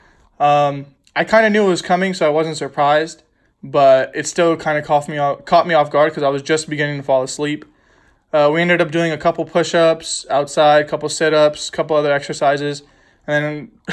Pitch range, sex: 140-160 Hz, male